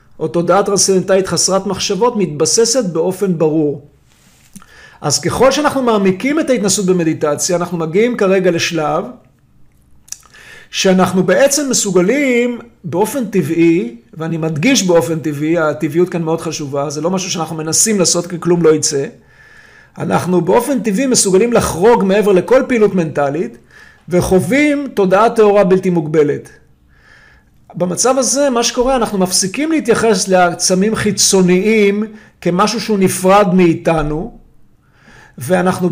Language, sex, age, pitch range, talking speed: Hebrew, male, 50-69, 165-220 Hz, 115 wpm